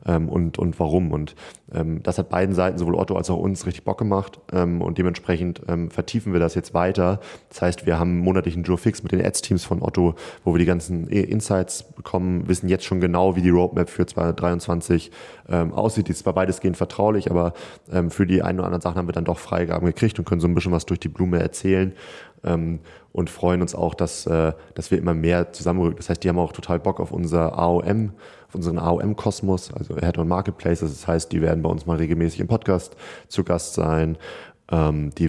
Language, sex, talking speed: German, male, 215 wpm